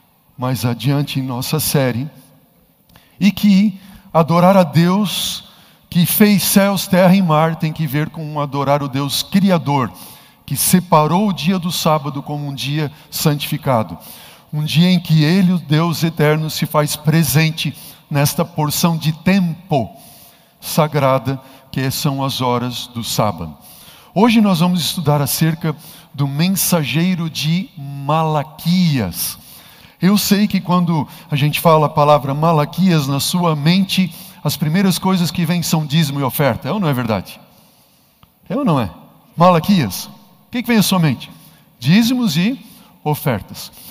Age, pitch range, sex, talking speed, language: 50-69, 140-180 Hz, male, 145 wpm, Portuguese